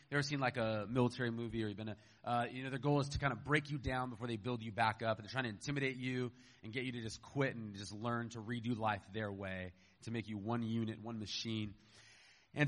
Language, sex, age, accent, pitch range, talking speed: English, male, 30-49, American, 120-150 Hz, 260 wpm